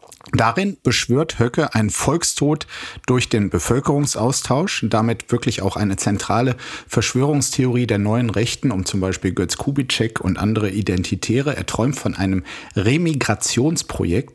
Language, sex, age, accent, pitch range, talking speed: German, male, 50-69, German, 95-130 Hz, 120 wpm